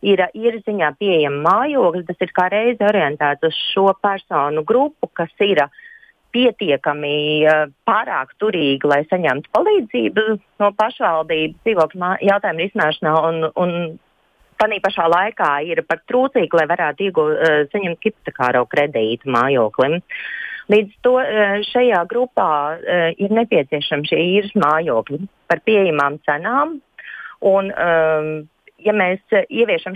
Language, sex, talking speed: Russian, female, 110 wpm